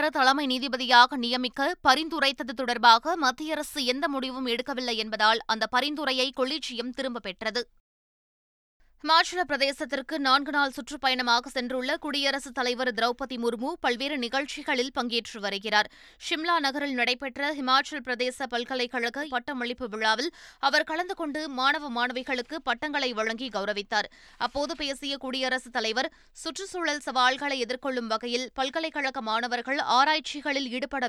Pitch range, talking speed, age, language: 245-290 Hz, 110 wpm, 20-39, Tamil